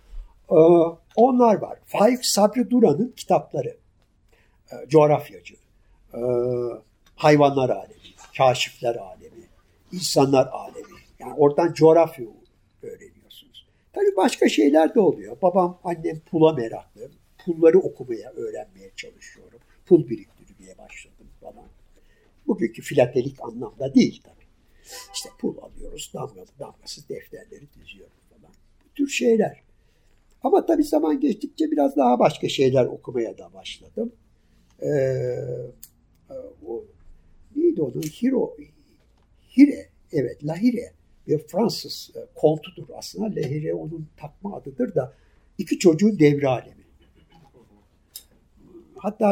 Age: 60-79